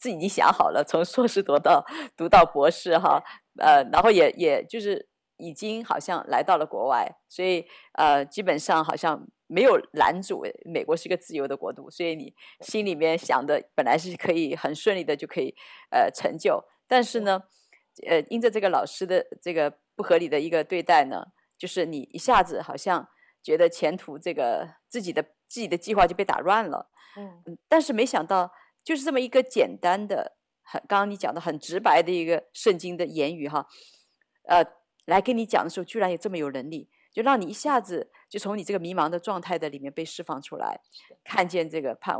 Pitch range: 160-215 Hz